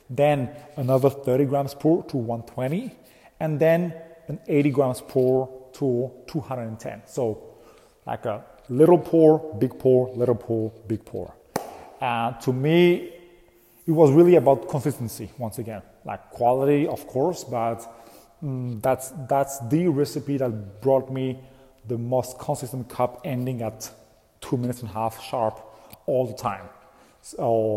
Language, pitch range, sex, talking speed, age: English, 115-150 Hz, male, 145 wpm, 30-49